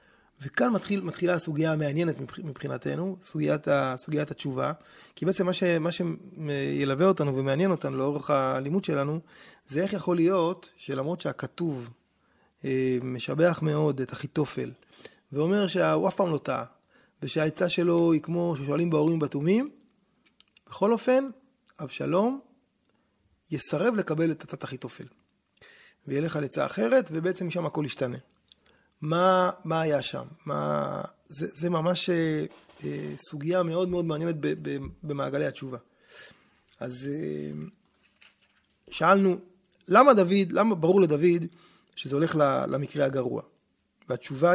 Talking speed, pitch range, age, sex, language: 120 wpm, 145-185 Hz, 30-49, male, Hebrew